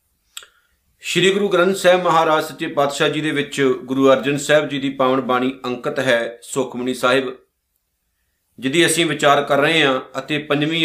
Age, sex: 50-69, male